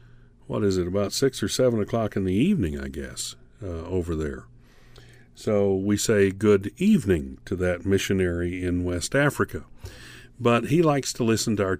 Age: 50-69